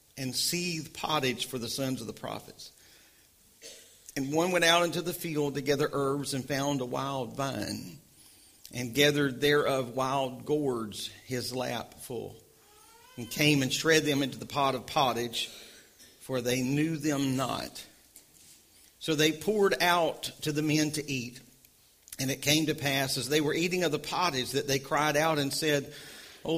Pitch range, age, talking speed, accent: 125-155 Hz, 50-69, 170 wpm, American